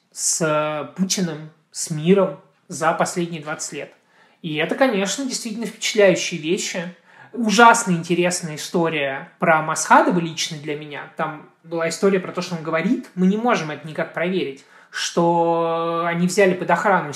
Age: 20-39